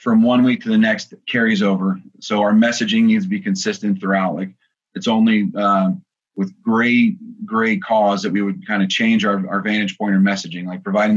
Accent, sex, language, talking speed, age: American, male, English, 205 wpm, 30-49